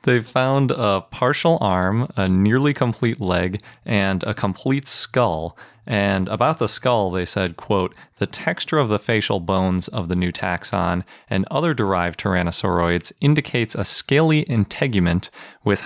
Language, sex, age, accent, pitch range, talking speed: English, male, 30-49, American, 90-115 Hz, 150 wpm